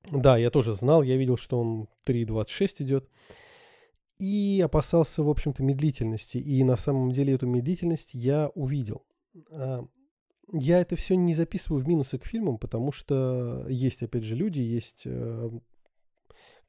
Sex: male